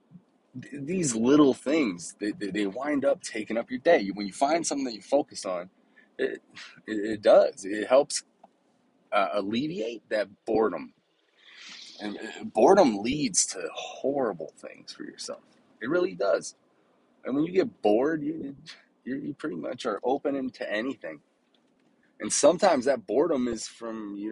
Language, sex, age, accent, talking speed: English, male, 20-39, American, 145 wpm